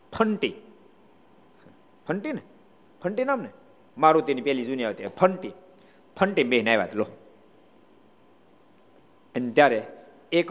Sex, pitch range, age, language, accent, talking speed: male, 120-175 Hz, 50-69, Gujarati, native, 90 wpm